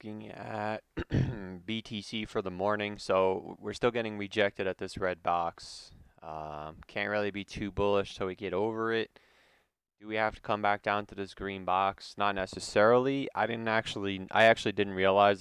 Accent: American